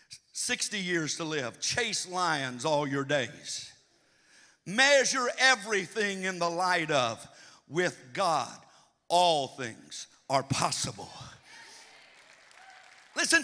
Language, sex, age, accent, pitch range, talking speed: English, male, 60-79, American, 170-260 Hz, 100 wpm